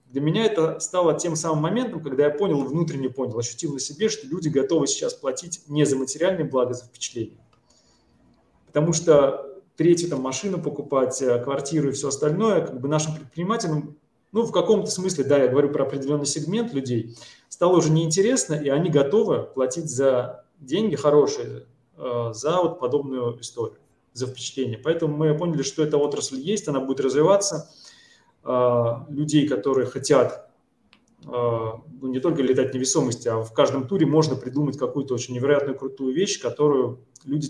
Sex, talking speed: male, 160 wpm